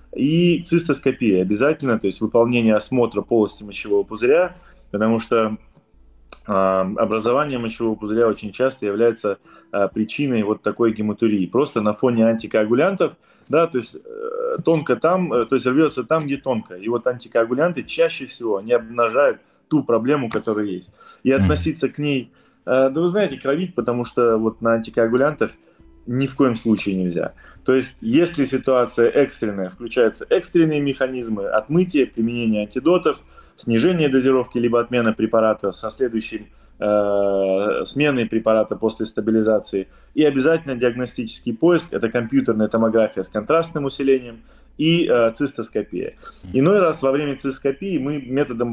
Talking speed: 140 wpm